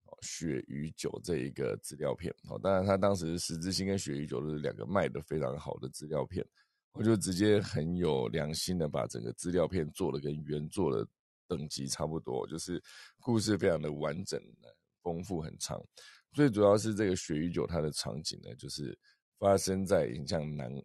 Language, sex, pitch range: Chinese, male, 75-100 Hz